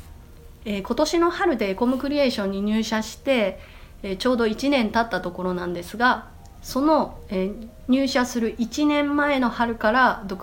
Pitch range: 170-240 Hz